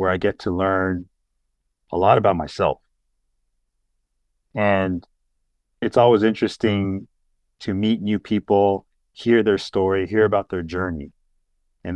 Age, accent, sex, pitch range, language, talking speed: 40-59, American, male, 90-105 Hz, English, 125 wpm